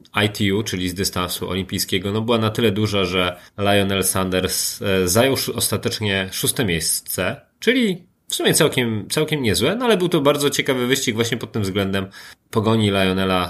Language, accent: Polish, native